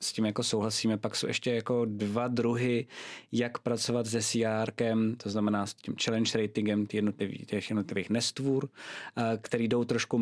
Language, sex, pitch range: Czech, male, 105-120 Hz